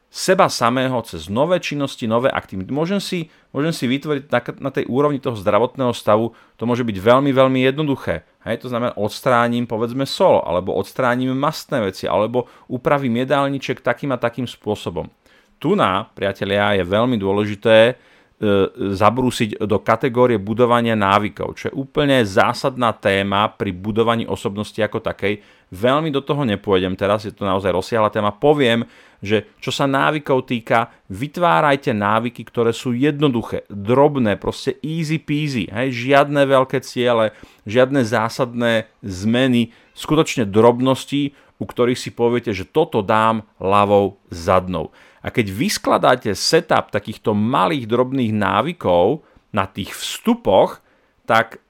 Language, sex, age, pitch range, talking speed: Slovak, male, 40-59, 110-140 Hz, 135 wpm